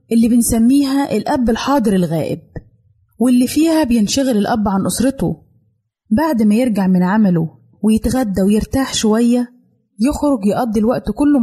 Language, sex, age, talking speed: Arabic, female, 20-39, 120 wpm